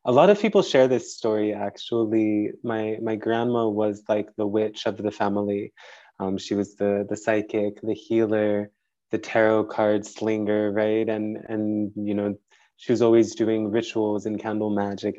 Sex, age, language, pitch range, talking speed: male, 20-39, English, 105-115 Hz, 170 wpm